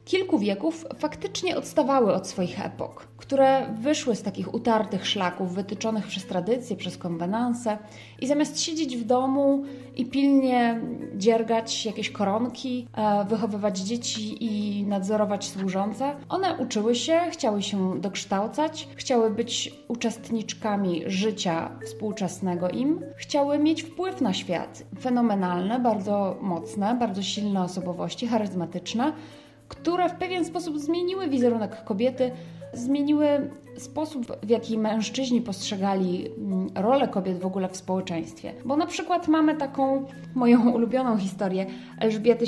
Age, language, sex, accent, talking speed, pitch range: 20-39, Polish, female, native, 120 wpm, 195-270 Hz